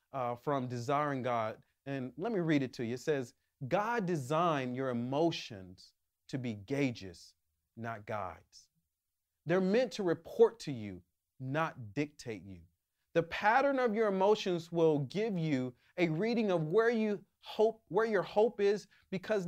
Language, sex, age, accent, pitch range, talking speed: English, male, 30-49, American, 125-210 Hz, 150 wpm